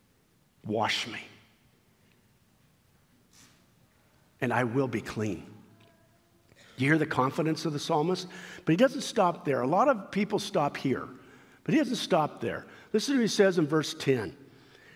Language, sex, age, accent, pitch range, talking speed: English, male, 50-69, American, 150-215 Hz, 155 wpm